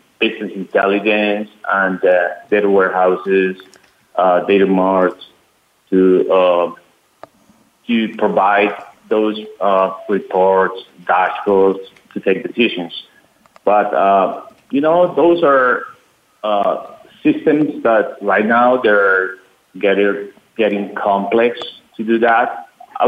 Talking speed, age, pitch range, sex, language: 100 wpm, 50-69, 100-135 Hz, male, English